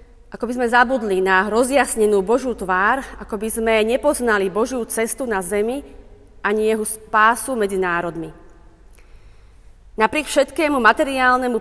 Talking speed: 125 wpm